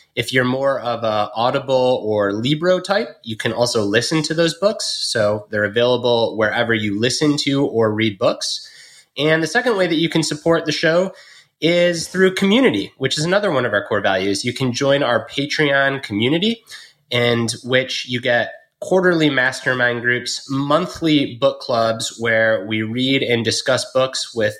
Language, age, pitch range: English, 20-39, 120-155 Hz